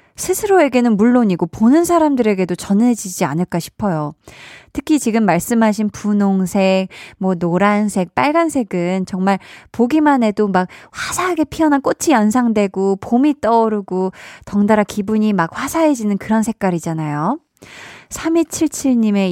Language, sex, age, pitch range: Korean, female, 20-39, 180-260 Hz